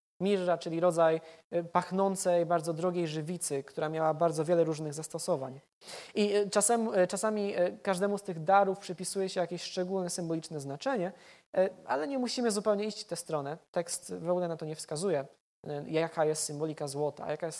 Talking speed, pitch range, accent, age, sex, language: 155 wpm, 160-205 Hz, native, 20-39, male, Polish